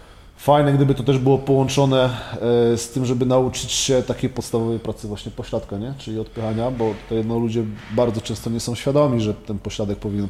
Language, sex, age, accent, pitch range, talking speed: Polish, male, 20-39, native, 105-135 Hz, 170 wpm